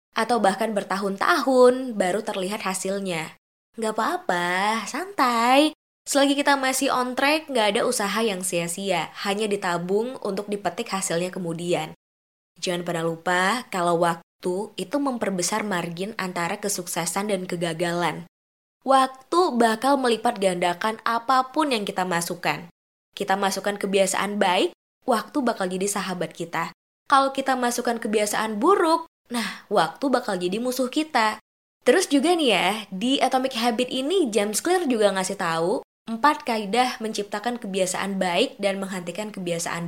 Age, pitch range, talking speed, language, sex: 20-39, 185-250 Hz, 130 wpm, Indonesian, female